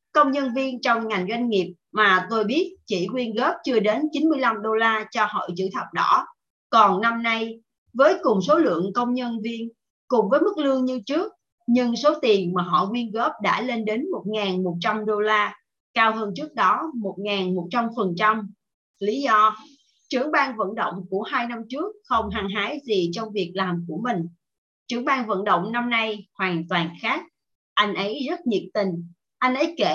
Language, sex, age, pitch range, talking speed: Vietnamese, female, 30-49, 195-260 Hz, 185 wpm